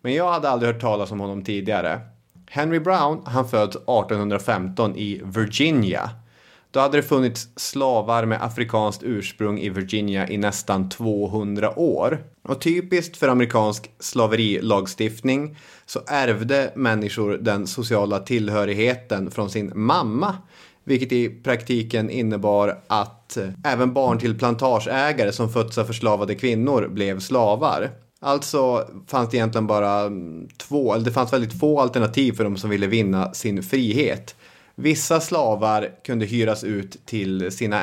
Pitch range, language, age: 100-125 Hz, English, 30-49